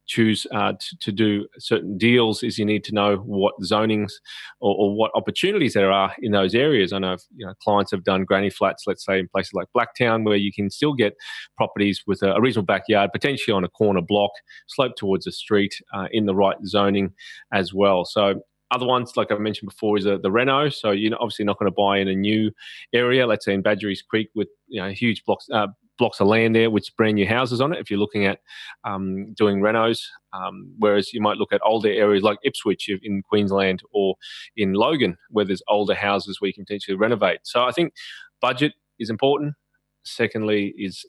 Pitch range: 100-115 Hz